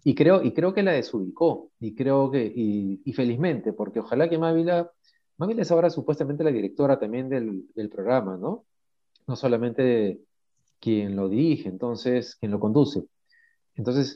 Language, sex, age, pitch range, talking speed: Spanish, male, 40-59, 110-145 Hz, 160 wpm